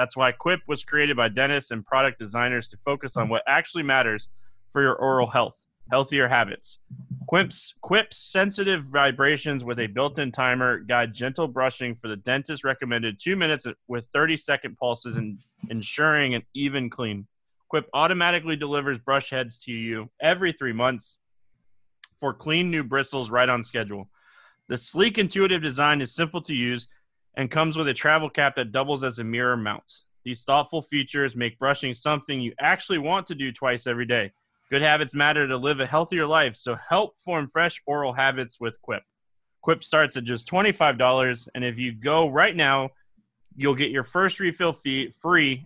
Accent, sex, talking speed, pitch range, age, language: American, male, 175 wpm, 120-155 Hz, 30-49, English